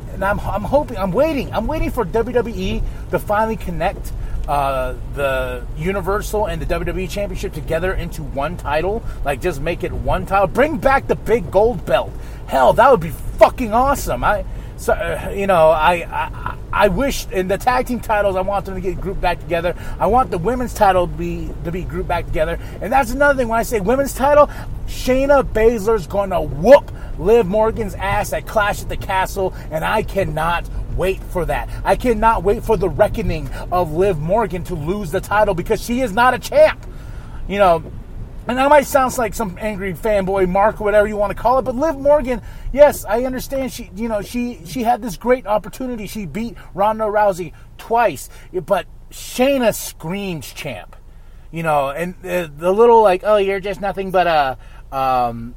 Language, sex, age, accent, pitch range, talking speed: English, male, 30-49, American, 165-230 Hz, 195 wpm